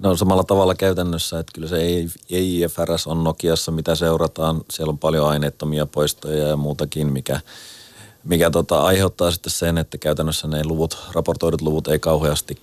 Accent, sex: native, male